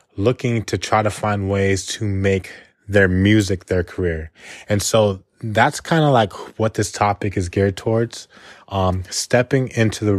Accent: American